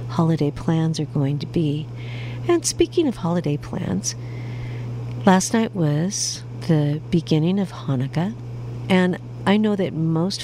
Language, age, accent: English, 50-69, American